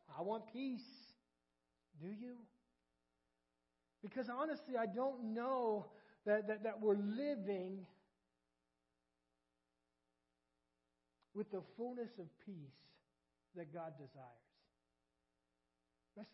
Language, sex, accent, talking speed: English, male, American, 90 wpm